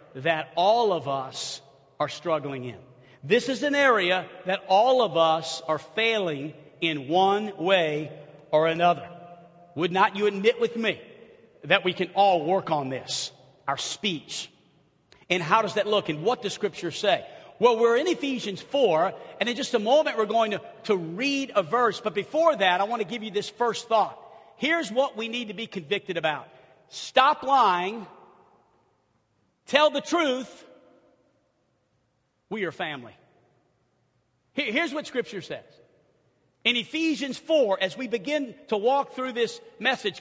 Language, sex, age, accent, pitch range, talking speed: English, male, 50-69, American, 185-275 Hz, 160 wpm